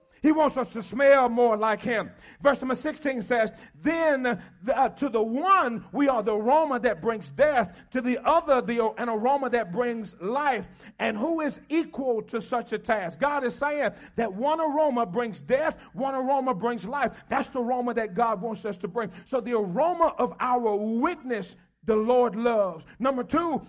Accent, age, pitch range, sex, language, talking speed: American, 40-59, 235-305 Hz, male, English, 185 wpm